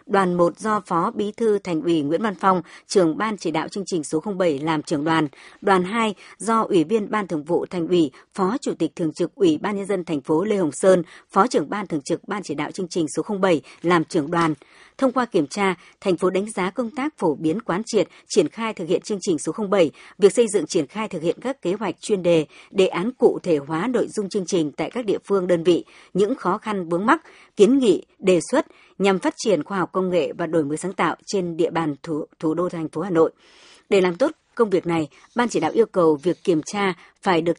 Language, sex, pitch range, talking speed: Vietnamese, male, 165-215 Hz, 250 wpm